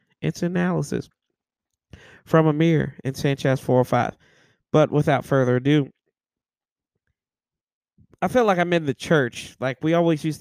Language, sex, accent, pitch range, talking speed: English, male, American, 130-160 Hz, 125 wpm